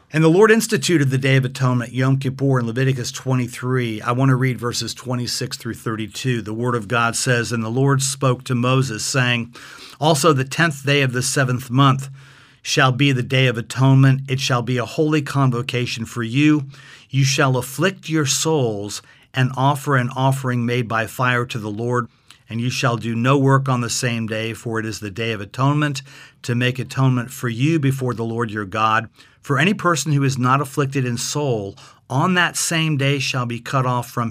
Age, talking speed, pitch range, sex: 50-69, 200 wpm, 120-140 Hz, male